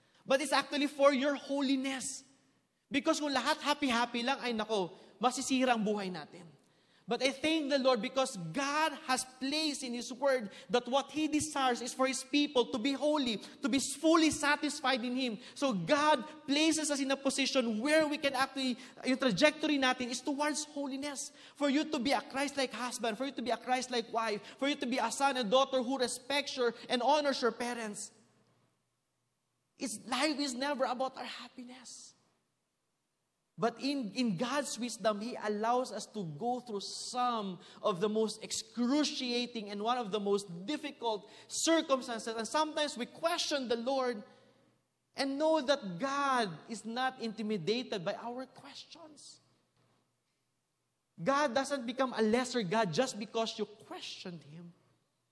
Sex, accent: male, Filipino